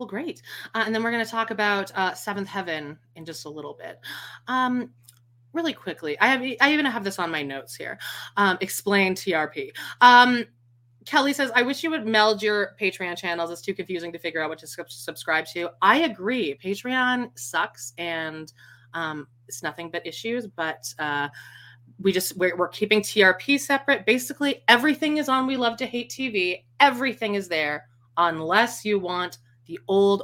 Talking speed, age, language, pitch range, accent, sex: 180 wpm, 30-49, English, 155-220 Hz, American, female